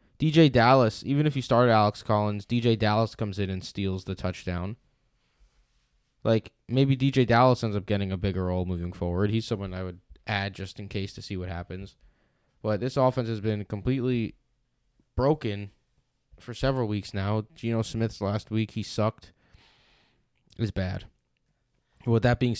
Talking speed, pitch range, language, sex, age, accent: 165 wpm, 100-115 Hz, English, male, 20-39, American